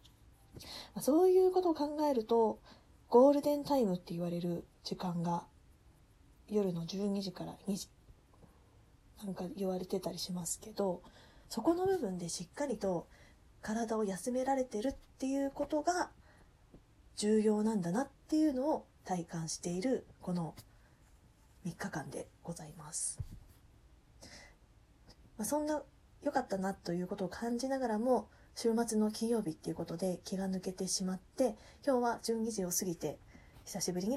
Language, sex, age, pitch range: Japanese, female, 20-39, 175-250 Hz